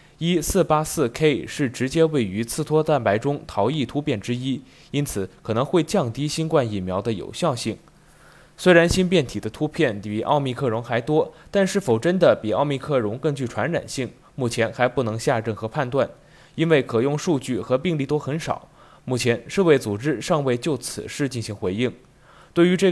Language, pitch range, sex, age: Chinese, 115-160 Hz, male, 20-39